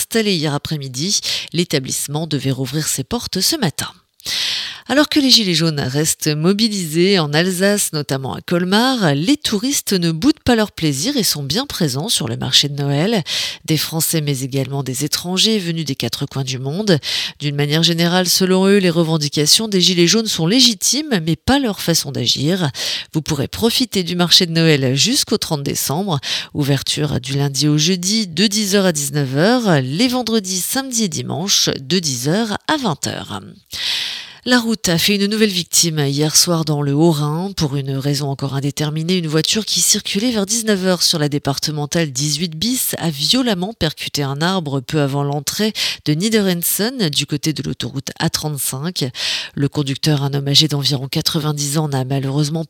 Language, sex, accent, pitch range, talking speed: French, female, French, 145-195 Hz, 170 wpm